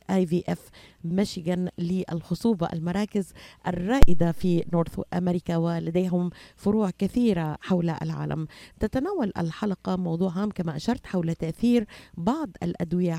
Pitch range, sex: 165-195 Hz, female